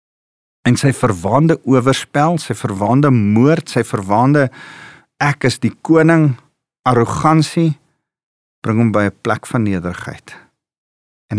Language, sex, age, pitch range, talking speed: English, male, 50-69, 105-145 Hz, 115 wpm